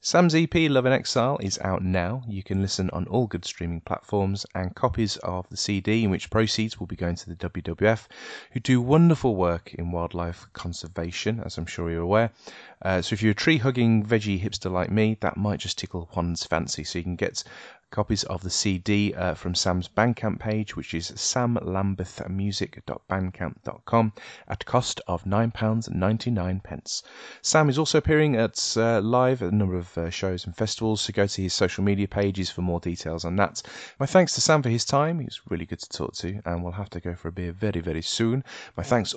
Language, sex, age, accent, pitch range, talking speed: English, male, 30-49, British, 90-110 Hz, 205 wpm